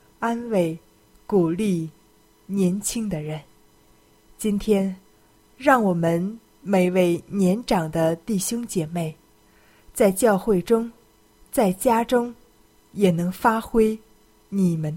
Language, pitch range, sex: Chinese, 160-210 Hz, female